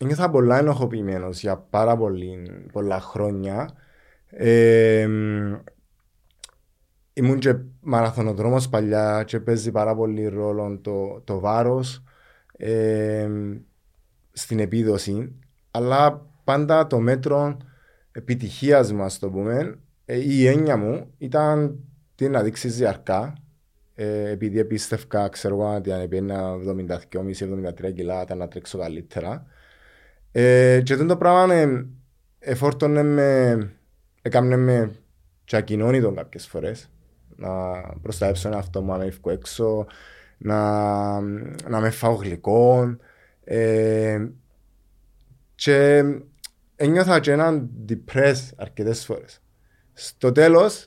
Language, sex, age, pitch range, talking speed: Greek, male, 20-39, 100-130 Hz, 95 wpm